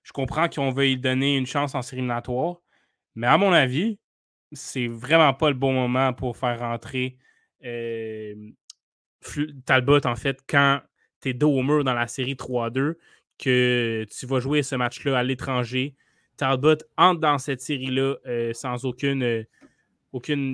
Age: 20-39